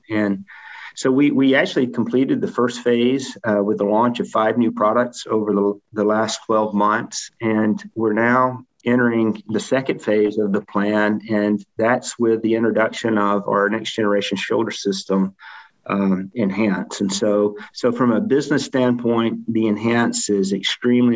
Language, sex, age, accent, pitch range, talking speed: English, male, 50-69, American, 105-125 Hz, 160 wpm